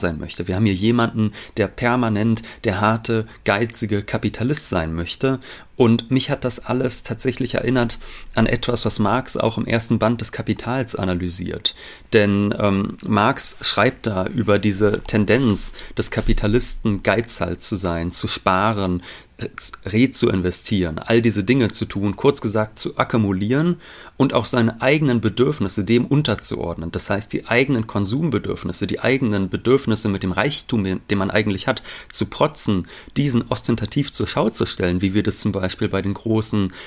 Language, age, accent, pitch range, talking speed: German, 30-49, German, 105-125 Hz, 160 wpm